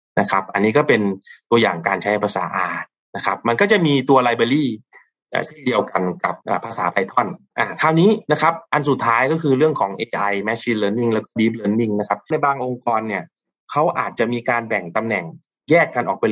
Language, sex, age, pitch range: Thai, male, 20-39, 110-135 Hz